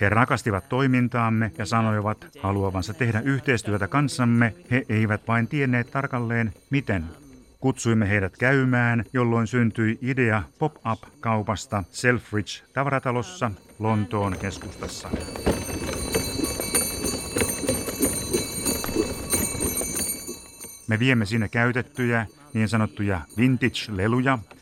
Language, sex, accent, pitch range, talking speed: Finnish, male, native, 105-130 Hz, 80 wpm